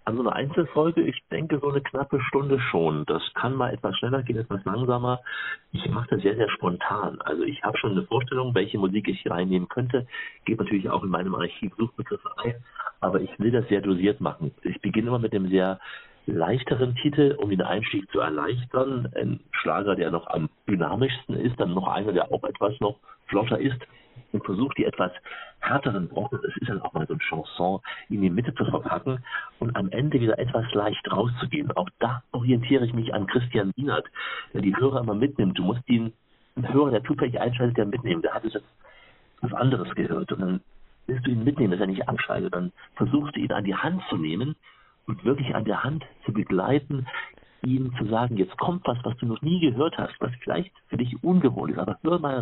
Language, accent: German, German